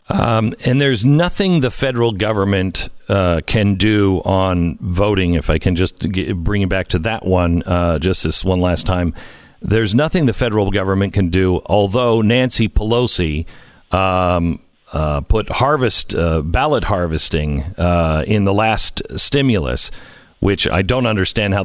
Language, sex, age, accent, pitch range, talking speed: English, male, 50-69, American, 90-125 Hz, 150 wpm